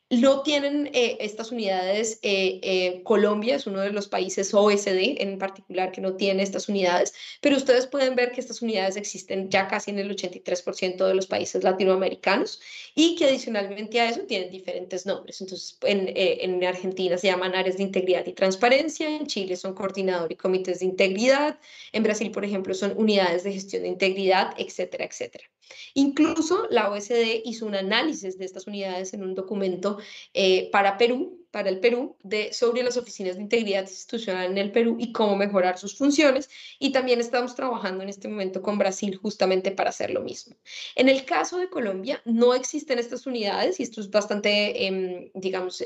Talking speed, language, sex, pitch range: 185 wpm, Spanish, female, 190-245 Hz